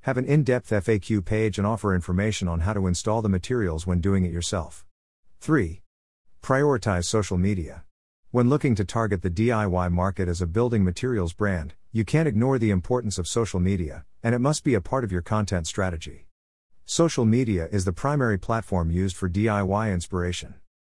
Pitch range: 90-110 Hz